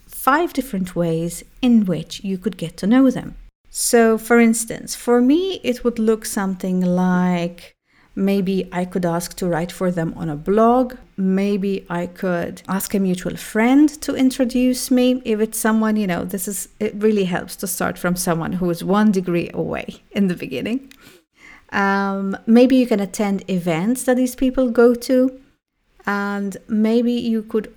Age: 40-59